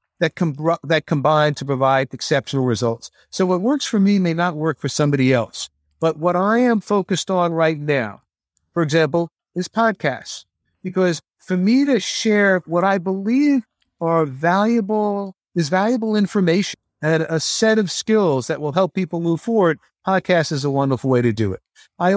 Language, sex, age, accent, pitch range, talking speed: English, male, 50-69, American, 145-185 Hz, 170 wpm